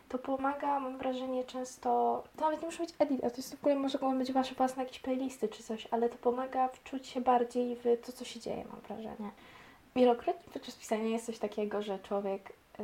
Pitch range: 210-250 Hz